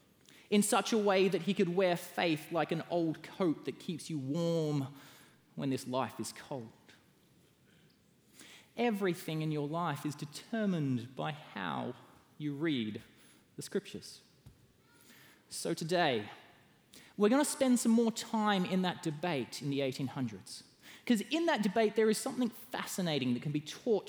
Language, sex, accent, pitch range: English, male, Australian, 145-185 Hz